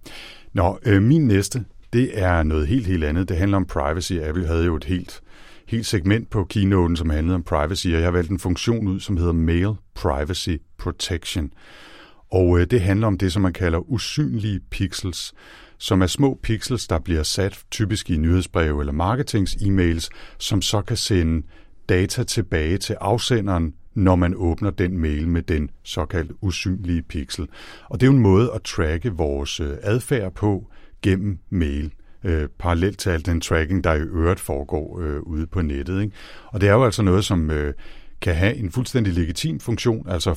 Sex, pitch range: male, 85-100 Hz